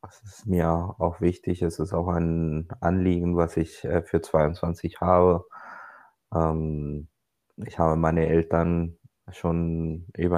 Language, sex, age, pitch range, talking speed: German, male, 20-39, 85-95 Hz, 120 wpm